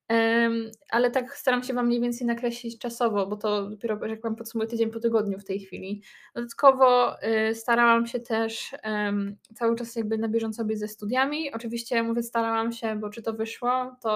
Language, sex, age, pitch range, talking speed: Polish, female, 20-39, 215-245 Hz, 180 wpm